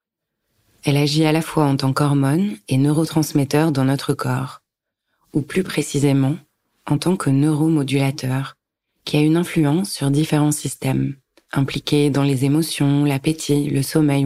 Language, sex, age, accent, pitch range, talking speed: French, female, 30-49, French, 140-155 Hz, 145 wpm